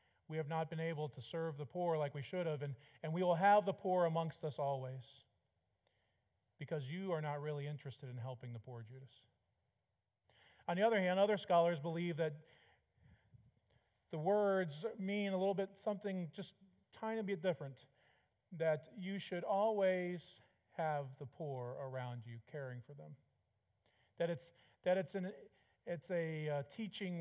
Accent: American